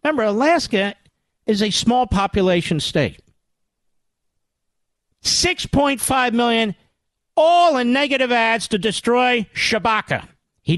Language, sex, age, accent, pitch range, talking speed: English, male, 50-69, American, 180-250 Hz, 95 wpm